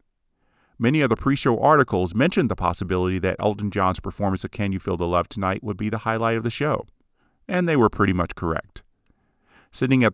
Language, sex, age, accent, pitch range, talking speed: English, male, 40-59, American, 90-115 Hz, 200 wpm